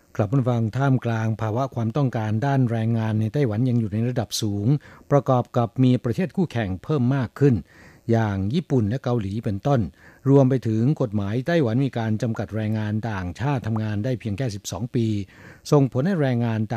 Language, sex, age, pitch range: Thai, male, 60-79, 105-130 Hz